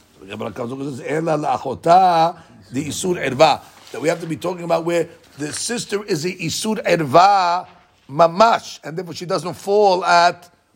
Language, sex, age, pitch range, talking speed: English, male, 60-79, 155-205 Hz, 125 wpm